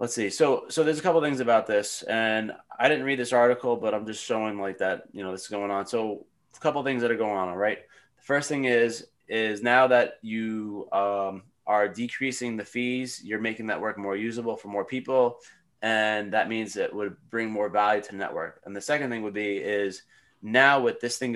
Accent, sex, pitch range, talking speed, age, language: American, male, 105-125 Hz, 235 wpm, 20-39, English